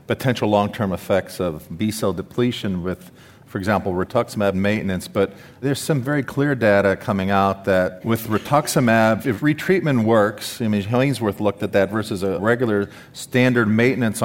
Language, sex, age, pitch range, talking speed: English, male, 40-59, 105-130 Hz, 155 wpm